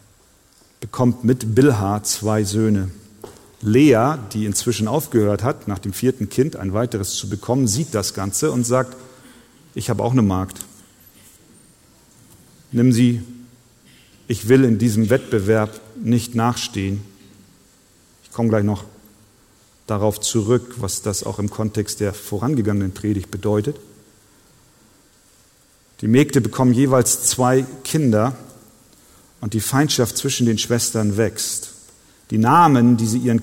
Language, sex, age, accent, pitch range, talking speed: German, male, 40-59, German, 105-130 Hz, 125 wpm